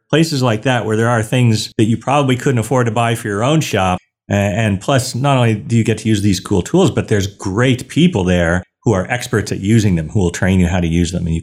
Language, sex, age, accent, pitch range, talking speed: English, male, 40-59, American, 90-120 Hz, 270 wpm